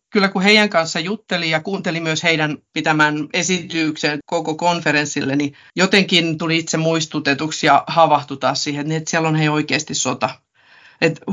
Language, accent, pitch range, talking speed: Finnish, native, 150-180 Hz, 150 wpm